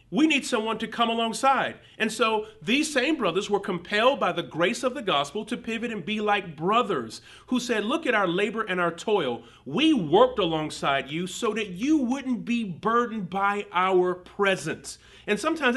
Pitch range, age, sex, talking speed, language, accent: 150-220 Hz, 40-59, male, 185 wpm, English, American